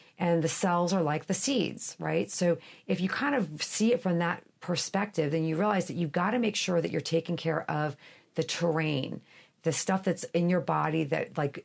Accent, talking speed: American, 215 wpm